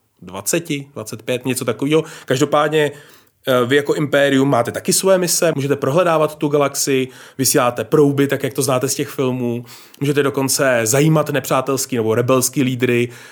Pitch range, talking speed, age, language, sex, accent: 120-145 Hz, 145 wpm, 30-49, Czech, male, native